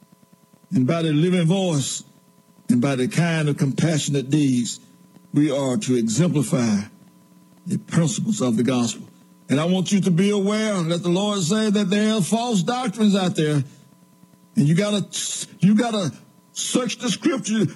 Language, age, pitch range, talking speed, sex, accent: English, 60-79, 185-230 Hz, 170 wpm, male, American